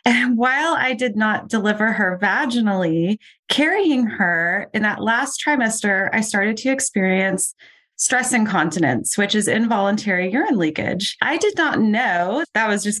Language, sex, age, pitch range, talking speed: English, female, 20-39, 185-245 Hz, 150 wpm